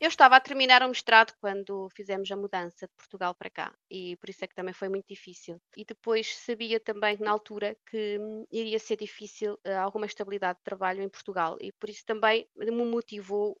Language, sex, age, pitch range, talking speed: Portuguese, female, 20-39, 205-240 Hz, 200 wpm